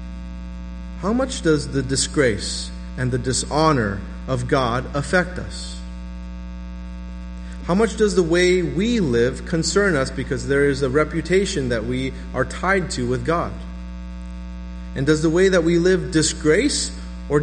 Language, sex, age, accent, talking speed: English, male, 30-49, American, 145 wpm